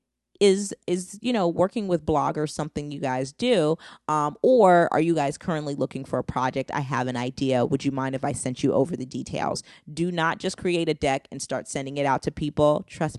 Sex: female